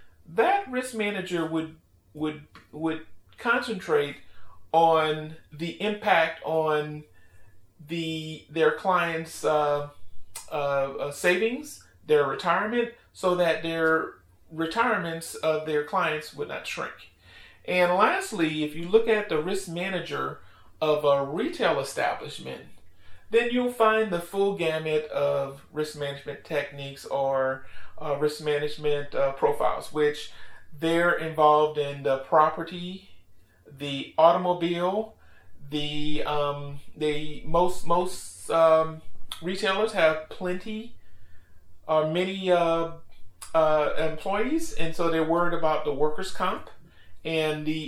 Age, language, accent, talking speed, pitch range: 40-59, English, American, 115 wpm, 145-175 Hz